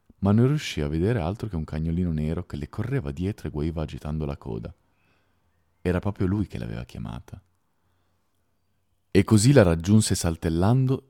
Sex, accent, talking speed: male, native, 160 wpm